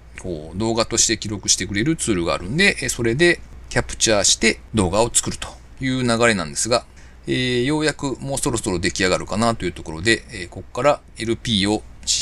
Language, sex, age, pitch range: Japanese, male, 40-59, 85-120 Hz